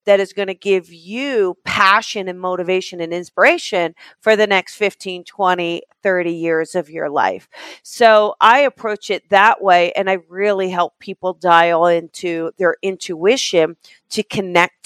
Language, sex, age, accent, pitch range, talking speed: English, female, 40-59, American, 180-220 Hz, 155 wpm